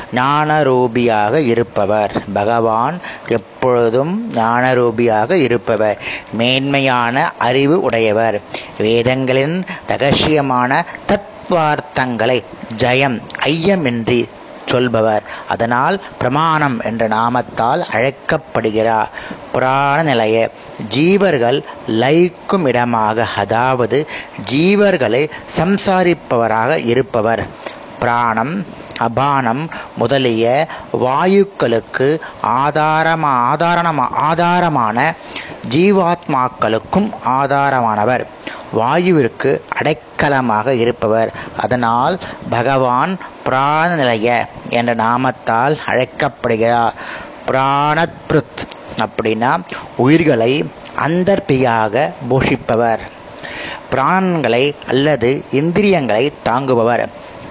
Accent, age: native, 30-49